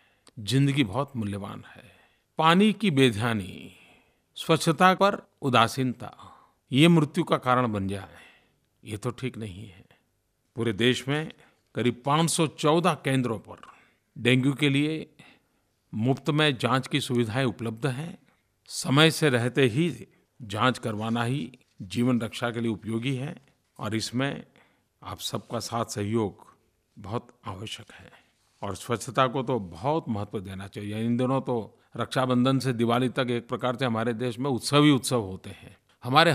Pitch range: 115-150 Hz